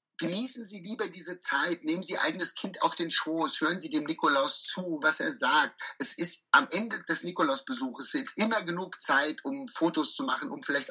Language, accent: German, German